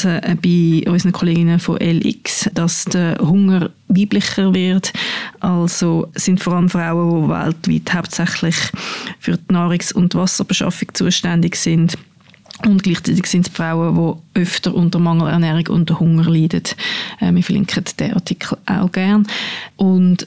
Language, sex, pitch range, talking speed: German, female, 175-210 Hz, 135 wpm